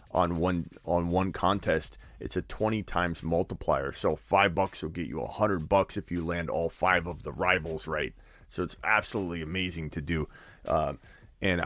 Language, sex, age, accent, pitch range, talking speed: English, male, 30-49, American, 80-105 Hz, 185 wpm